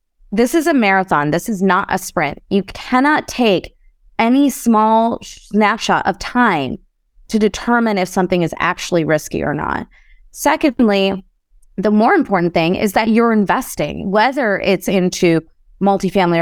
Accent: American